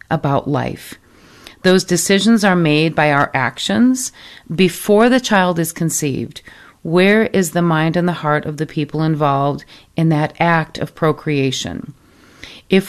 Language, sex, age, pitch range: English, female, 40-59, 155-185 Hz